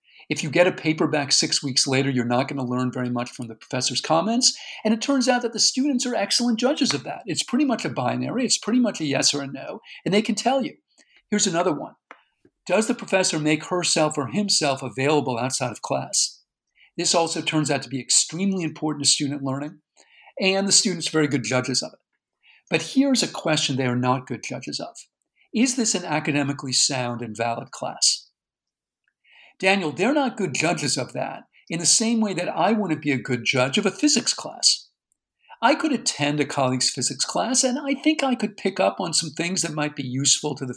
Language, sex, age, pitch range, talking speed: English, male, 50-69, 135-210 Hz, 220 wpm